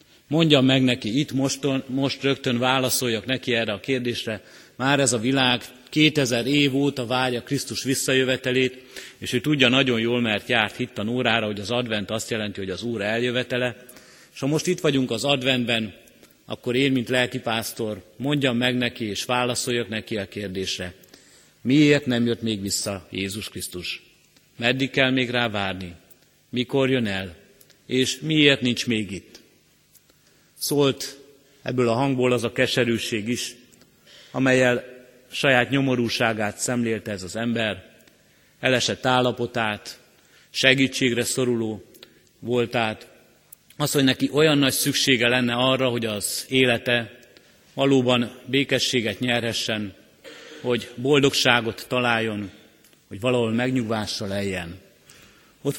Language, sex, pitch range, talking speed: Hungarian, male, 115-130 Hz, 130 wpm